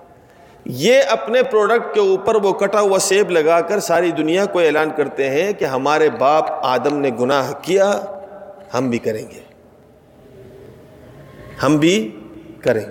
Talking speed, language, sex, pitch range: 145 wpm, Urdu, male, 145-205 Hz